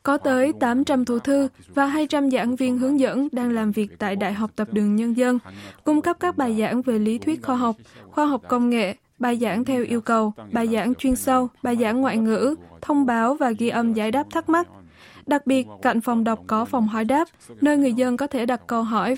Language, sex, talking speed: Vietnamese, female, 230 wpm